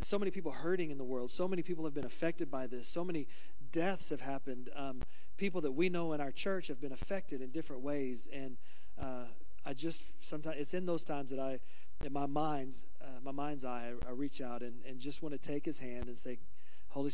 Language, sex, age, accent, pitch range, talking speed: English, male, 40-59, American, 125-160 Hz, 235 wpm